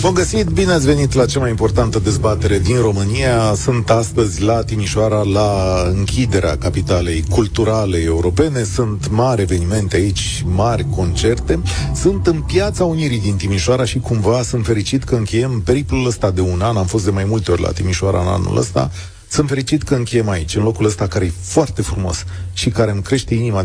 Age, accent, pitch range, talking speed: 40-59, native, 95-120 Hz, 185 wpm